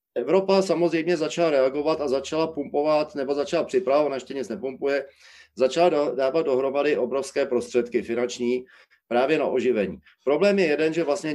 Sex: male